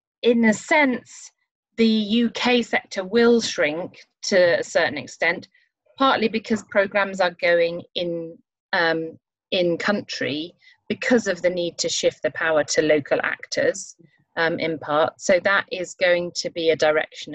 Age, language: 30-49, English